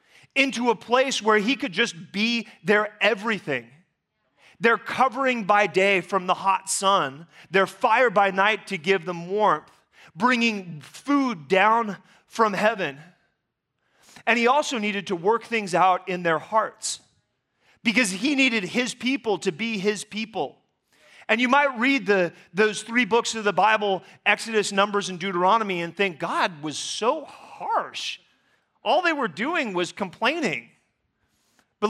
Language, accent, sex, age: English, American, male, 30-49